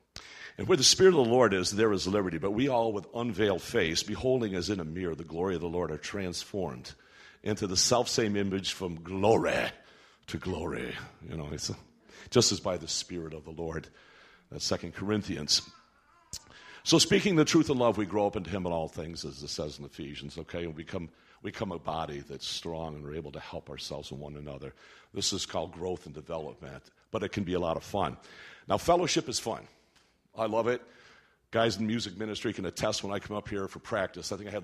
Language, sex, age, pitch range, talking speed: English, male, 60-79, 90-125 Hz, 220 wpm